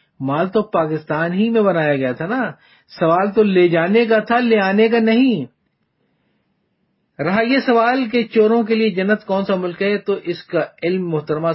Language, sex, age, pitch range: Urdu, male, 50-69, 155-220 Hz